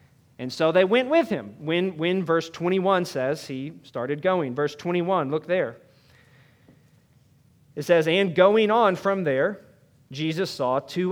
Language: English